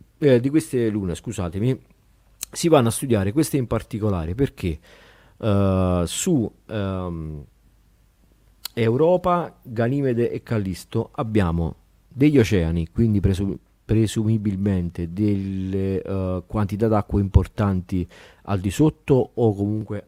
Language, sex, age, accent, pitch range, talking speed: Italian, male, 40-59, native, 90-115 Hz, 110 wpm